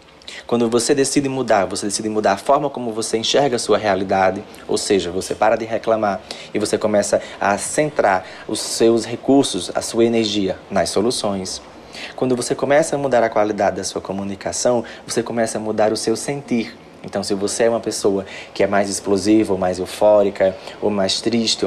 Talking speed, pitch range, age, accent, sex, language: 185 wpm, 105-135 Hz, 20-39, Brazilian, male, Portuguese